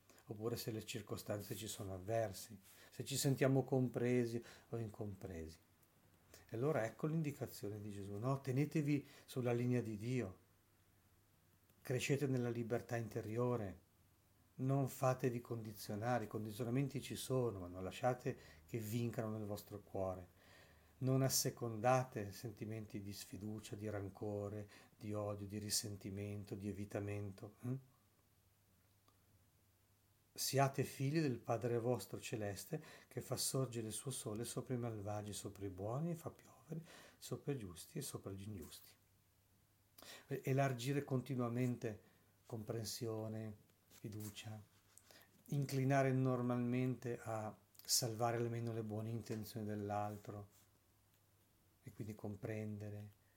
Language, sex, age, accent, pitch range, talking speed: Italian, male, 50-69, native, 100-125 Hz, 115 wpm